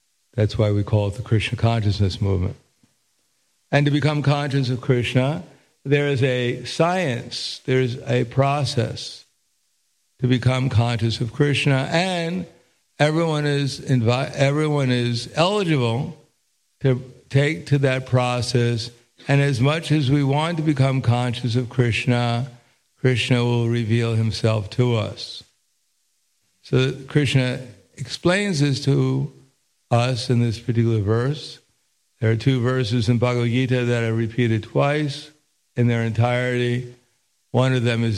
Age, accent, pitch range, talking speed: 60-79, American, 115-140 Hz, 135 wpm